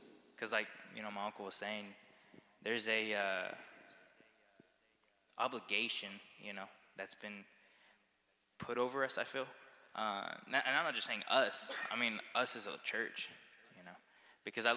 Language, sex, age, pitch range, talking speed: English, male, 20-39, 105-120 Hz, 155 wpm